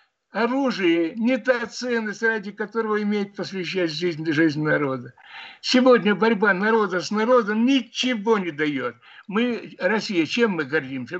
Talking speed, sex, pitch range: 130 wpm, male, 155-215 Hz